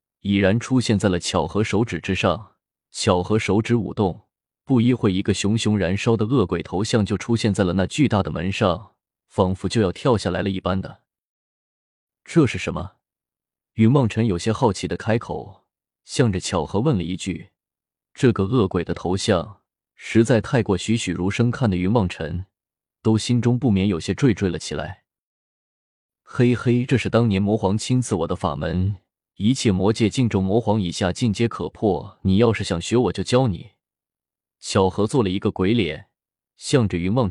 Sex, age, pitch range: male, 20-39, 95-115 Hz